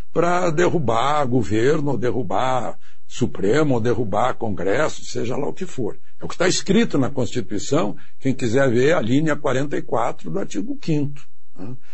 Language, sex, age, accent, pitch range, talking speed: Portuguese, male, 60-79, Brazilian, 130-170 Hz, 150 wpm